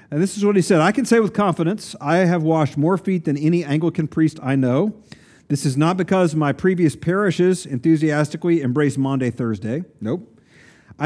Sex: male